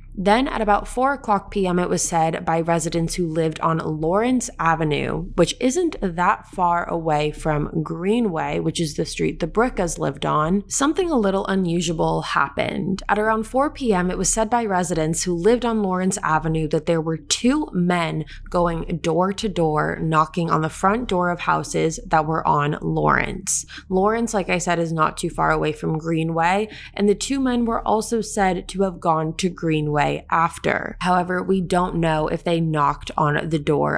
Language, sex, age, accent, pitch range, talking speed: English, female, 20-39, American, 155-200 Hz, 185 wpm